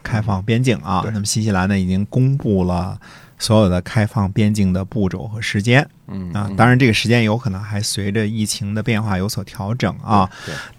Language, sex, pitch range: Chinese, male, 95-115 Hz